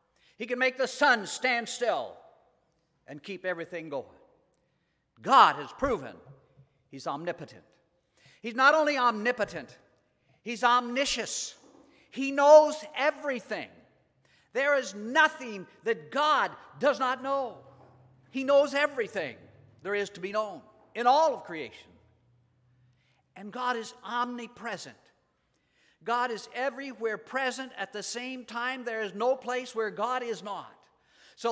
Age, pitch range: 50-69, 185-255 Hz